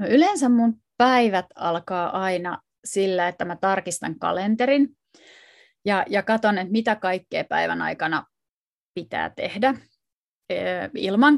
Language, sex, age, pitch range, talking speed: Finnish, female, 30-49, 185-255 Hz, 115 wpm